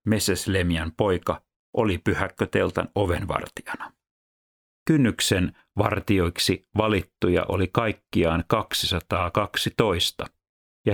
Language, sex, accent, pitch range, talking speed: Finnish, male, native, 80-95 Hz, 70 wpm